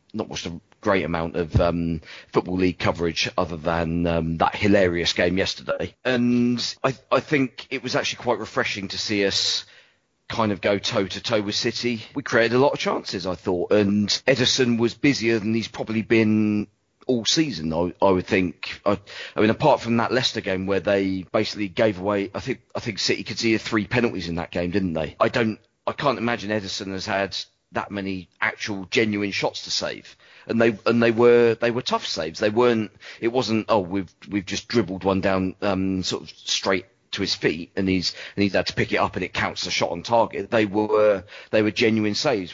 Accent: British